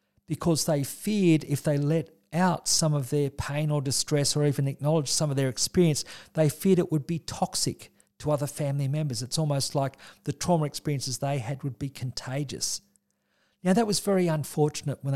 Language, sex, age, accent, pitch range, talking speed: English, male, 50-69, Australian, 140-180 Hz, 185 wpm